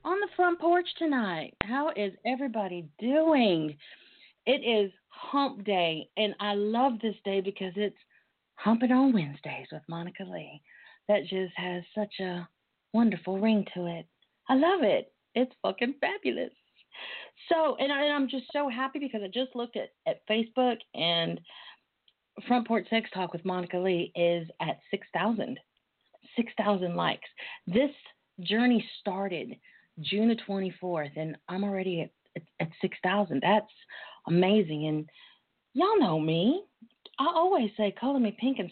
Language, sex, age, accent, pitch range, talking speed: English, female, 40-59, American, 185-265 Hz, 150 wpm